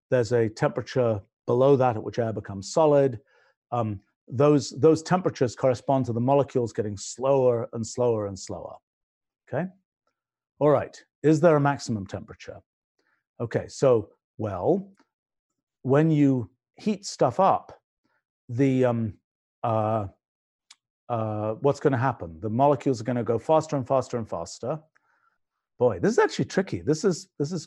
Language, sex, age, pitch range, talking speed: English, male, 50-69, 115-150 Hz, 145 wpm